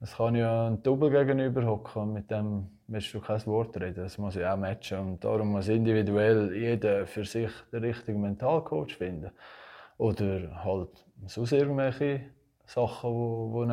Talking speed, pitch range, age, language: 155 wpm, 95-115 Hz, 20-39, German